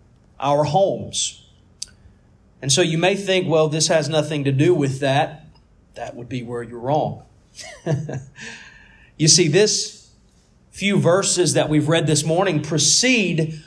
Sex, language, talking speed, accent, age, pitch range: male, English, 140 wpm, American, 40-59, 135-175 Hz